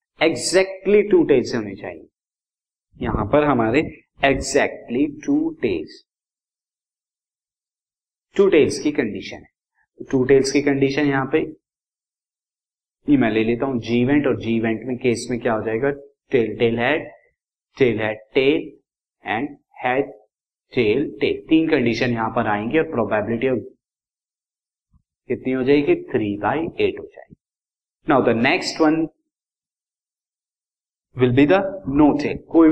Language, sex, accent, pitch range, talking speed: Hindi, male, native, 120-160 Hz, 115 wpm